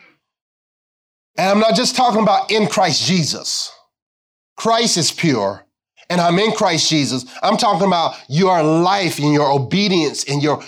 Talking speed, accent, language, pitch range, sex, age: 150 wpm, American, English, 170-235 Hz, male, 30-49